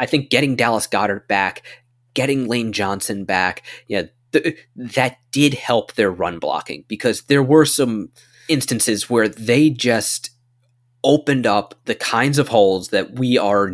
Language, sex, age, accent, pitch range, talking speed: English, male, 20-39, American, 110-130 Hz, 160 wpm